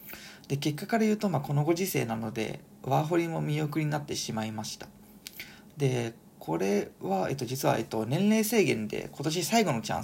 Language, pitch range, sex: Japanese, 130-195 Hz, male